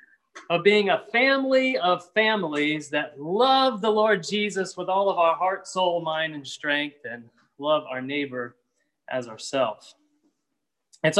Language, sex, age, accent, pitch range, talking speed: English, male, 30-49, American, 160-210 Hz, 145 wpm